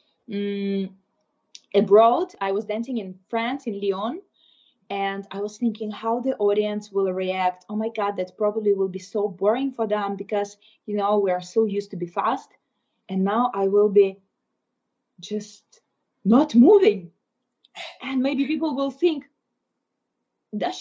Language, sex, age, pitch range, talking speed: English, female, 20-39, 200-245 Hz, 155 wpm